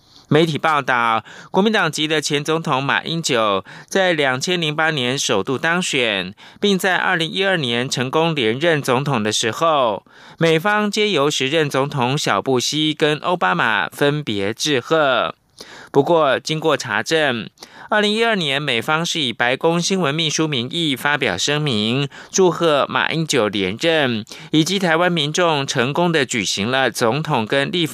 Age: 20-39